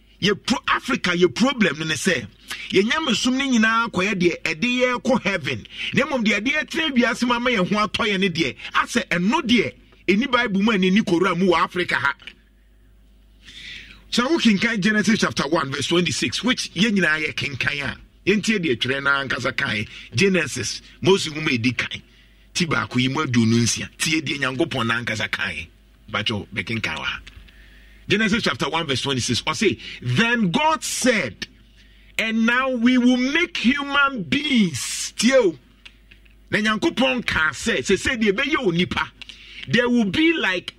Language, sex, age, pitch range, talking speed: English, male, 50-69, 155-240 Hz, 110 wpm